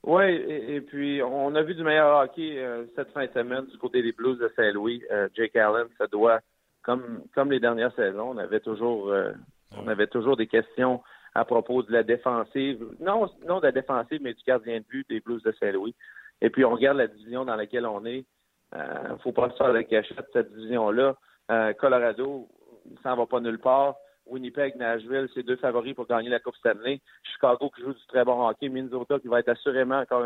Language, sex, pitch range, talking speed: French, male, 120-140 Hz, 220 wpm